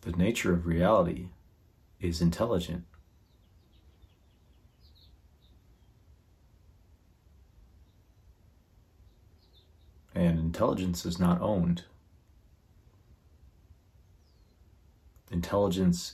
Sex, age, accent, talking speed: male, 30-49, American, 45 wpm